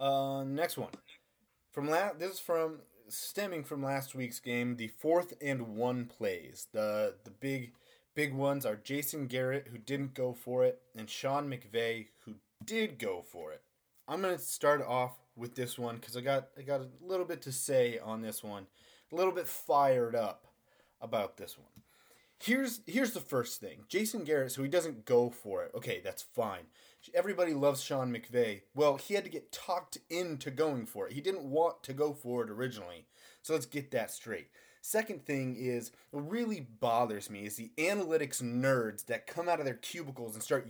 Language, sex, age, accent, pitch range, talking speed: English, male, 30-49, American, 120-170 Hz, 190 wpm